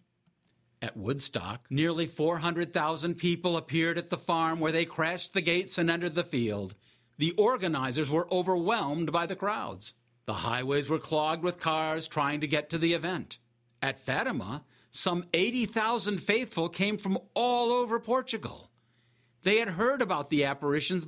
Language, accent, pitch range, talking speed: English, American, 125-180 Hz, 150 wpm